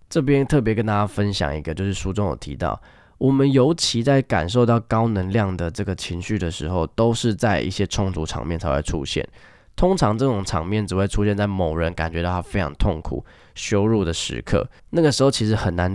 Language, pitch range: Chinese, 85-110 Hz